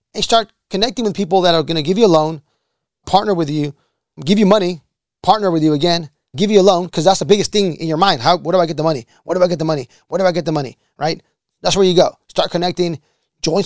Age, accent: 30-49, American